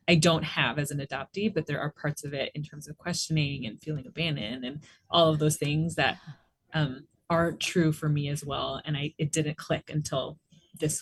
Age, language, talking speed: 20-39, English, 210 wpm